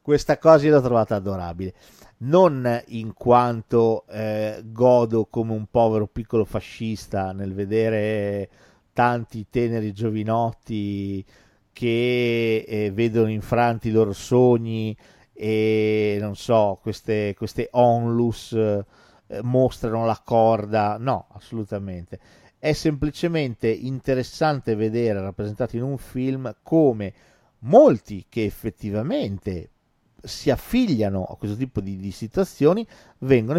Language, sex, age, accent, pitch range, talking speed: Italian, male, 50-69, native, 105-125 Hz, 110 wpm